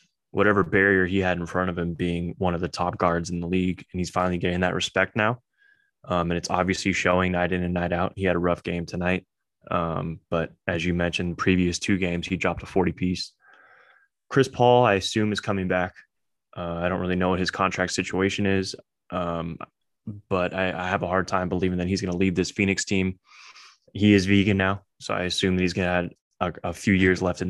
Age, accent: 20-39, American